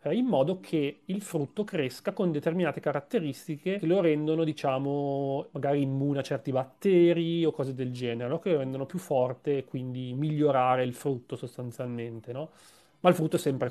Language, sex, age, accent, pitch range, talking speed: Italian, male, 30-49, native, 130-170 Hz, 175 wpm